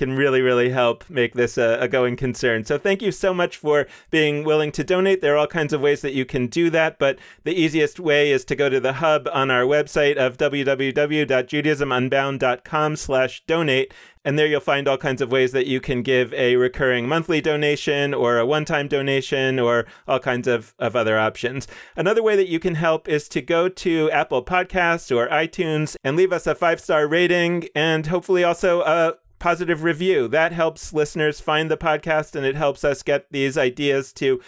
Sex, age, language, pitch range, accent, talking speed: male, 30-49, English, 135-165 Hz, American, 200 wpm